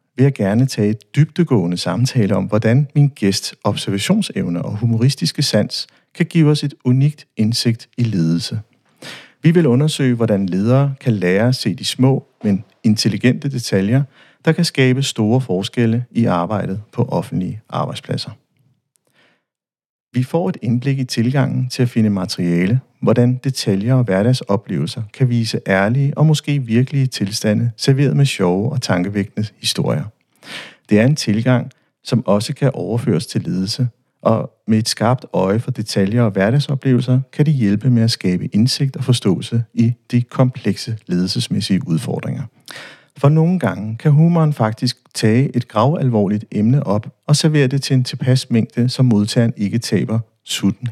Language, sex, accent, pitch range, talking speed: Danish, male, native, 110-135 Hz, 155 wpm